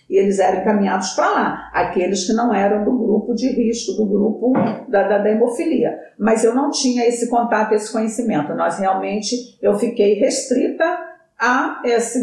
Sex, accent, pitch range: female, Brazilian, 200-240 Hz